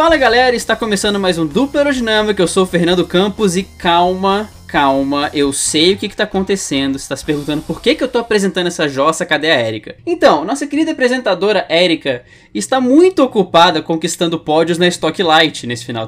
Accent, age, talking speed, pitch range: Brazilian, 20-39, 200 wpm, 155-230 Hz